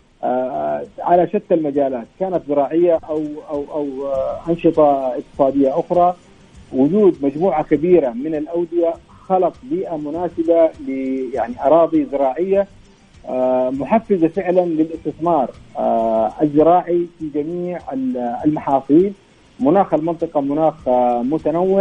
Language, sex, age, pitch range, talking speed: Arabic, male, 40-59, 140-175 Hz, 100 wpm